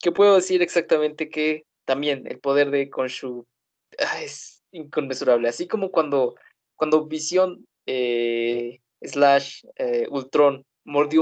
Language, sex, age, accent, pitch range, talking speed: Spanish, male, 20-39, Mexican, 125-185 Hz, 125 wpm